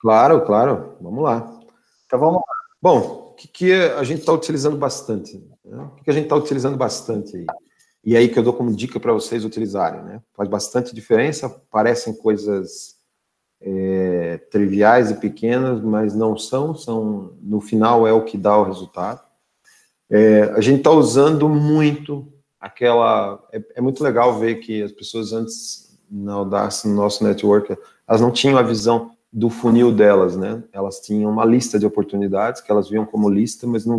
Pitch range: 105-130 Hz